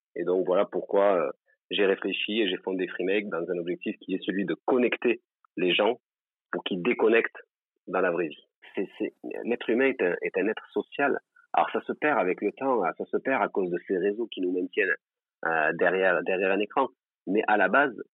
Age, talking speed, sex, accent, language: 40-59, 215 wpm, male, French, French